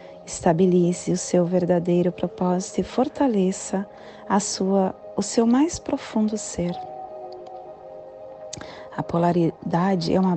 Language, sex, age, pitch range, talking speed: Portuguese, female, 30-49, 185-275 Hz, 105 wpm